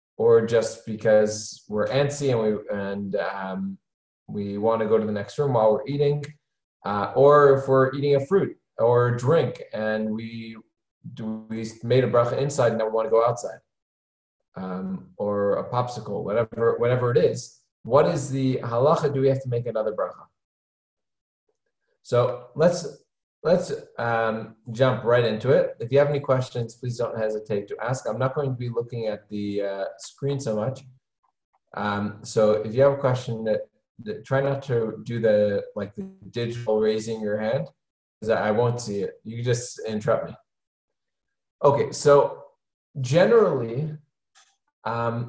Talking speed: 170 wpm